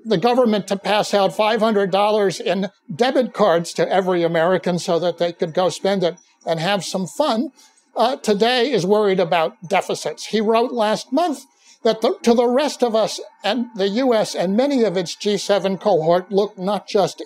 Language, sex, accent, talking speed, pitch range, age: English, male, American, 180 wpm, 180-240 Hz, 60-79